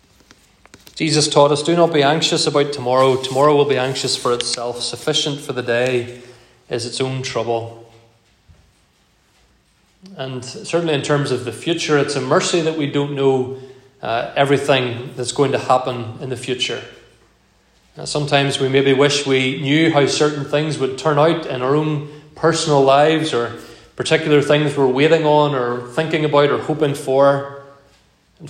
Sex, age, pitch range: male, 30-49, 125-150 Hz